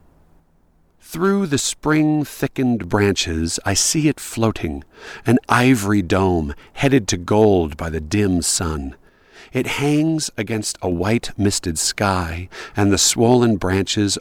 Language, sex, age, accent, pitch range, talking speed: English, male, 50-69, American, 90-140 Hz, 120 wpm